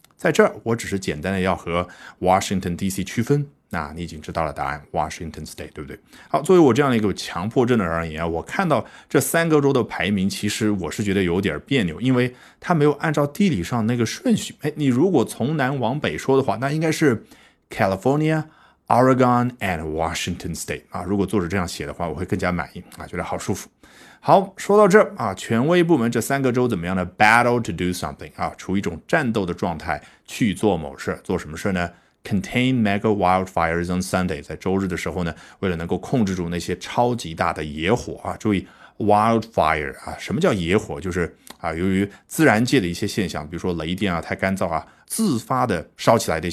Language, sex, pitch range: Chinese, male, 90-130 Hz